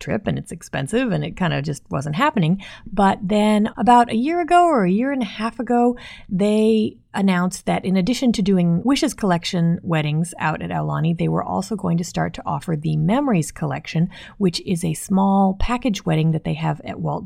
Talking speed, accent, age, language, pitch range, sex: 205 wpm, American, 30-49, English, 165-215 Hz, female